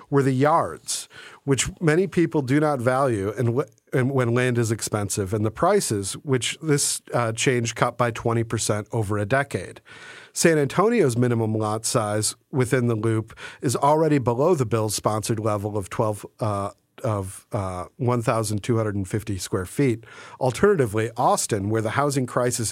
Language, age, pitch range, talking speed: English, 50-69, 110-140 Hz, 145 wpm